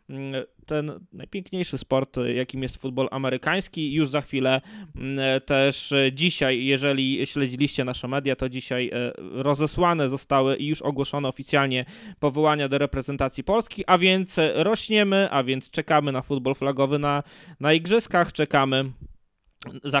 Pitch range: 135-165 Hz